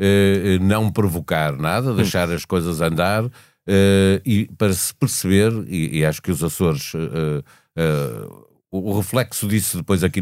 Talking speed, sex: 130 wpm, male